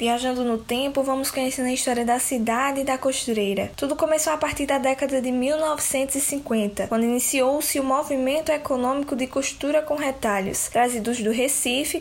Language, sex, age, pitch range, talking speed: Portuguese, female, 10-29, 245-300 Hz, 155 wpm